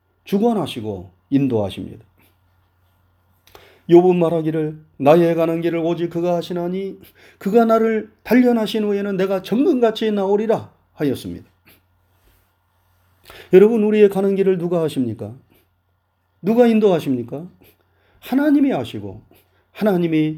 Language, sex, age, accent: Korean, male, 40-59, native